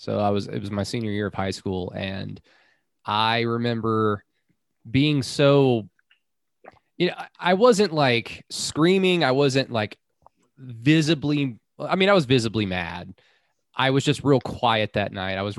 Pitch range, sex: 105-135 Hz, male